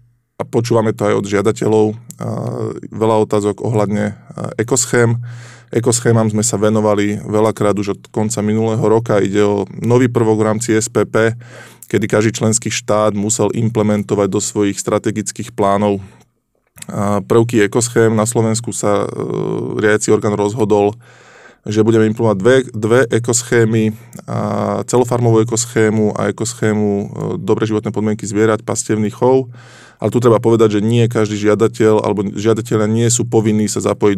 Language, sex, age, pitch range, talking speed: Slovak, male, 20-39, 105-115 Hz, 130 wpm